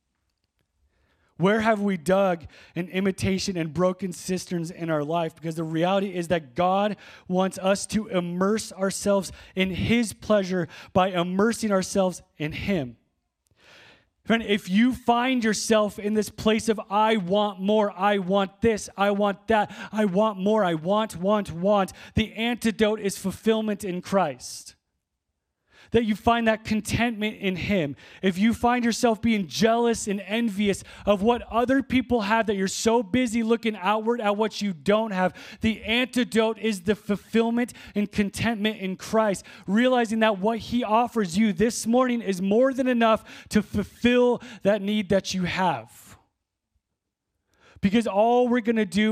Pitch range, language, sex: 165-220 Hz, English, male